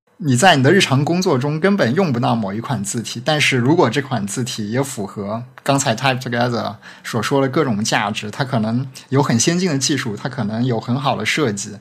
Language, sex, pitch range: Chinese, male, 115-145 Hz